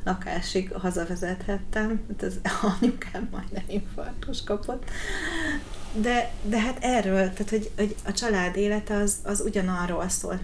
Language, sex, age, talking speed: Hungarian, female, 30-49, 130 wpm